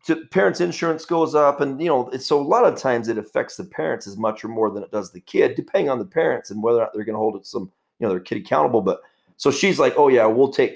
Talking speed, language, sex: 300 wpm, English, male